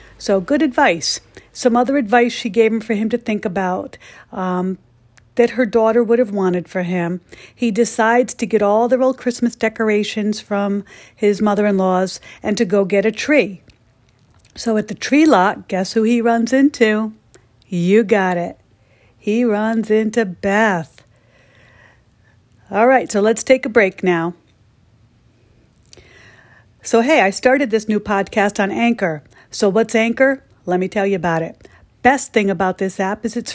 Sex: female